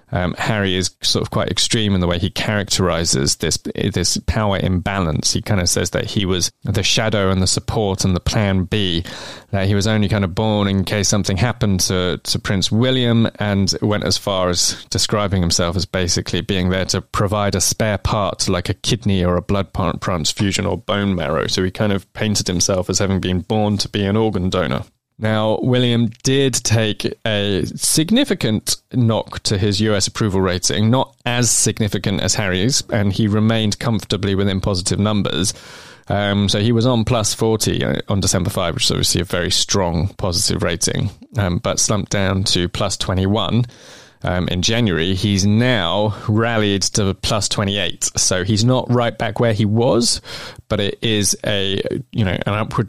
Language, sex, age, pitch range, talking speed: English, male, 20-39, 95-110 Hz, 190 wpm